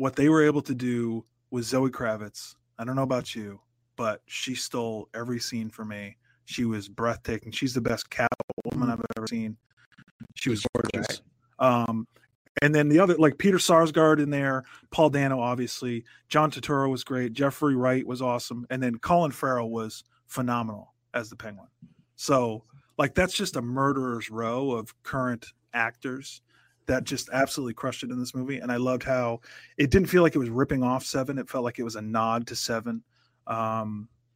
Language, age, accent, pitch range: English, 30-49, American, 115-135 Hz